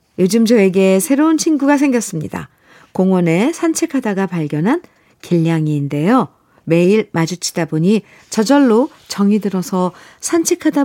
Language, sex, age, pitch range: Korean, female, 50-69, 165-225 Hz